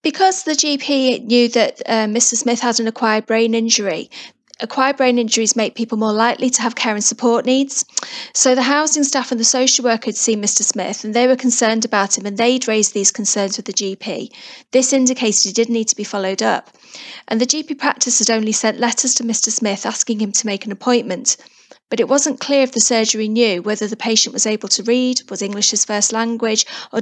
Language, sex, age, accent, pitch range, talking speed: English, female, 30-49, British, 215-250 Hz, 220 wpm